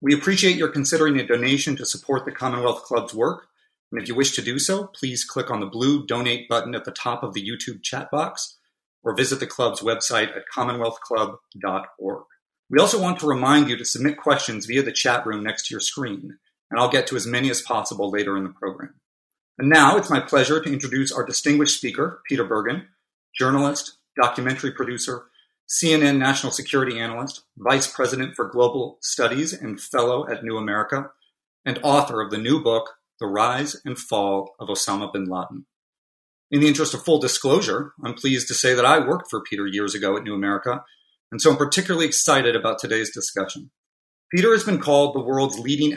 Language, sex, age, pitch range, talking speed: English, male, 40-59, 110-145 Hz, 195 wpm